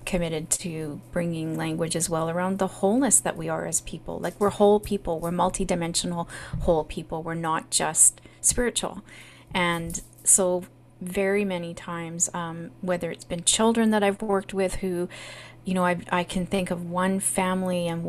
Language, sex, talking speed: English, female, 170 wpm